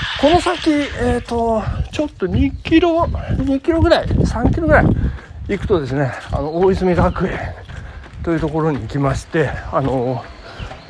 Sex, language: male, Japanese